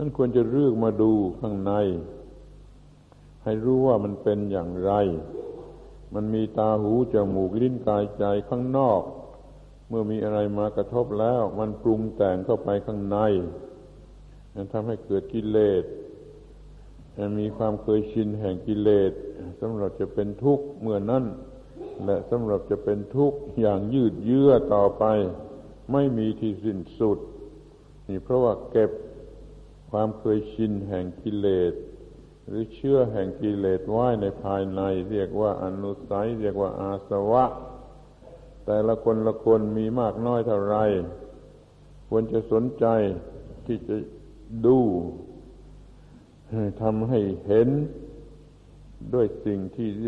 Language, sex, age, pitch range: Thai, male, 60-79, 100-120 Hz